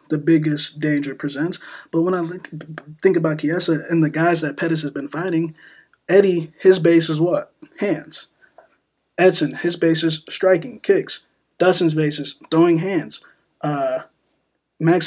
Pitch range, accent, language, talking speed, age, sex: 155-180 Hz, American, English, 145 wpm, 20-39, male